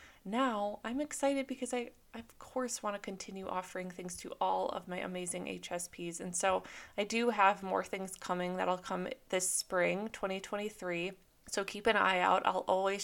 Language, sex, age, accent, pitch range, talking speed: English, female, 20-39, American, 180-210 Hz, 180 wpm